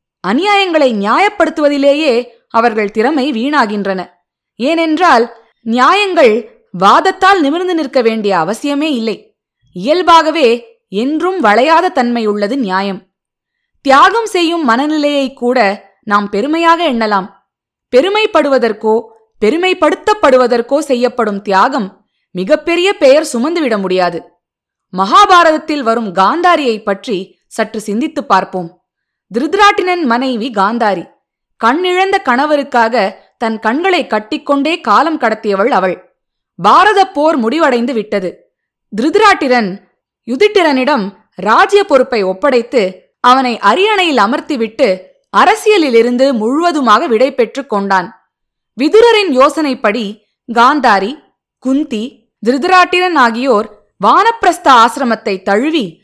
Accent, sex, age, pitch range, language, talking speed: native, female, 20-39, 215-315 Hz, Tamil, 80 wpm